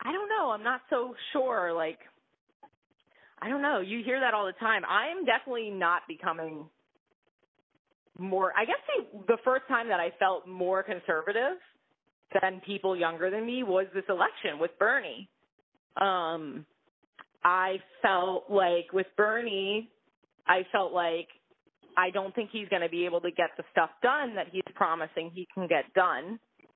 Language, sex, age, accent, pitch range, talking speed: English, female, 30-49, American, 175-235 Hz, 160 wpm